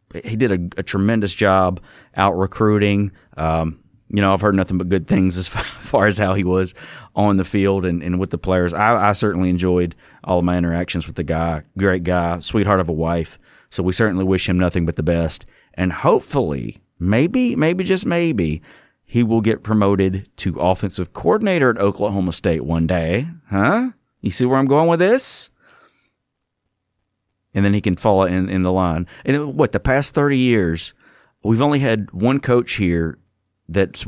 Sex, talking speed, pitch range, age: male, 190 wpm, 90-115 Hz, 30-49